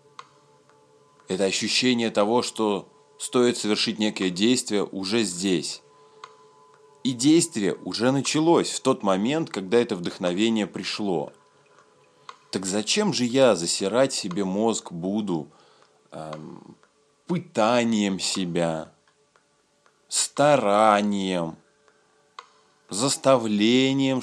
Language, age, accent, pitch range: Russian, 30-49, native, 95-145 Hz